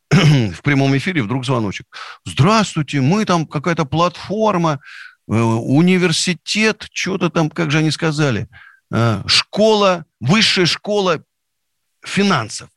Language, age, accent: Russian, 50-69, native